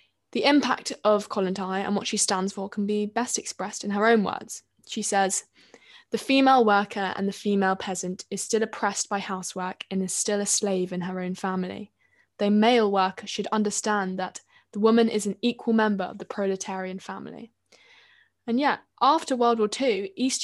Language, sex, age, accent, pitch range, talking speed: English, female, 10-29, British, 195-225 Hz, 190 wpm